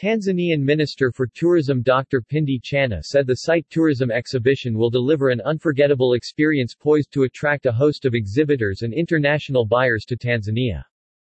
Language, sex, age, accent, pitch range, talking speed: English, male, 40-59, American, 120-150 Hz, 155 wpm